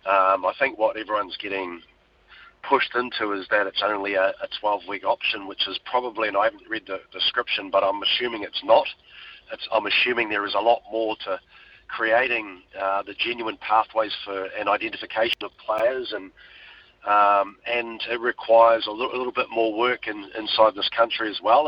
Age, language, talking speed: 40-59, English, 190 wpm